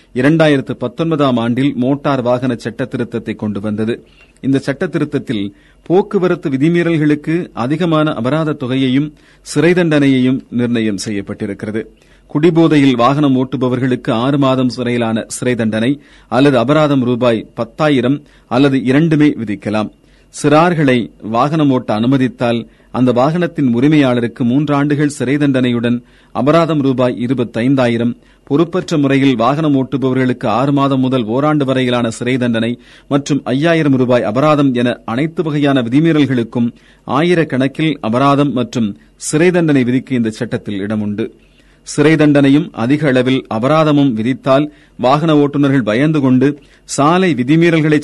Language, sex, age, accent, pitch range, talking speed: Tamil, male, 40-59, native, 120-150 Hz, 110 wpm